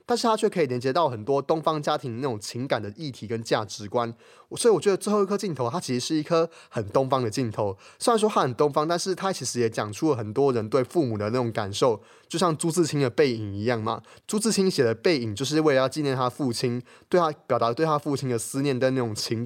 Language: Chinese